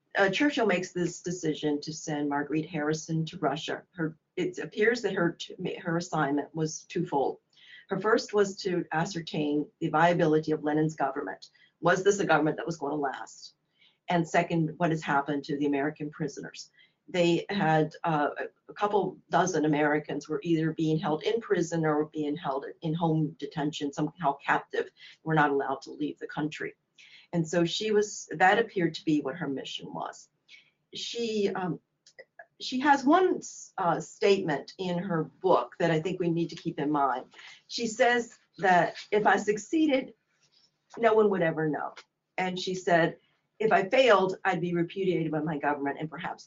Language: English